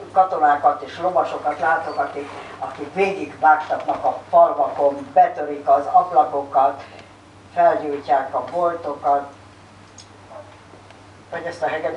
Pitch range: 145-190 Hz